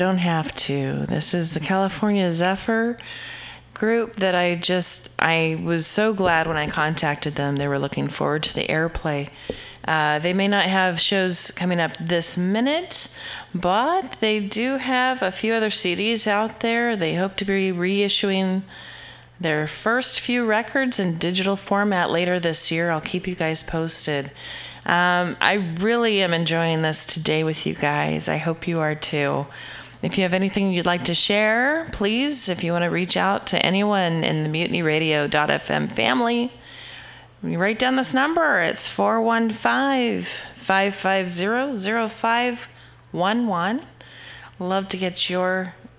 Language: English